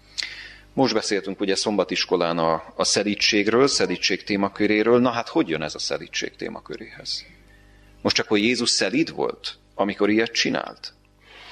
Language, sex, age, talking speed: Hungarian, male, 30-49, 130 wpm